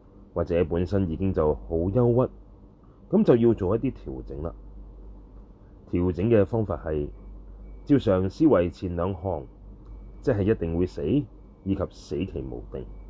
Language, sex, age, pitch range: Chinese, male, 30-49, 90-105 Hz